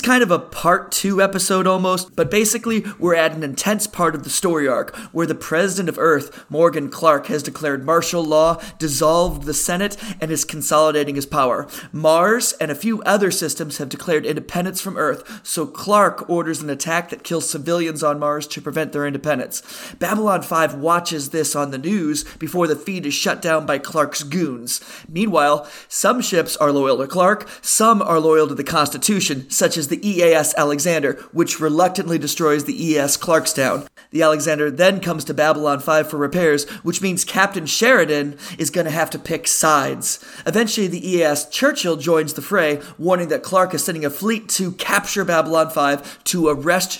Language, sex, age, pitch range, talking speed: English, male, 30-49, 150-185 Hz, 185 wpm